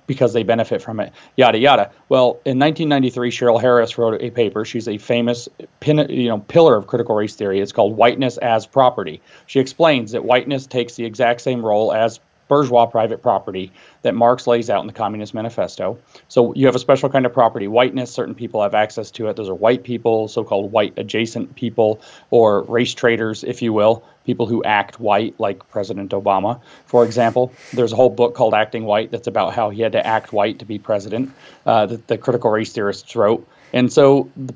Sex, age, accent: male, 30-49, American